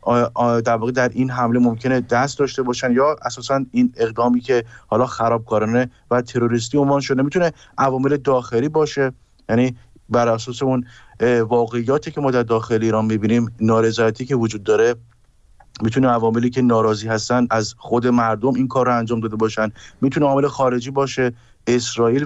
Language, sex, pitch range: Persian, male, 115-130 Hz